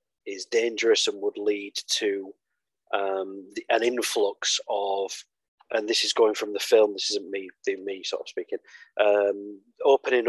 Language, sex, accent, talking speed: English, male, British, 165 wpm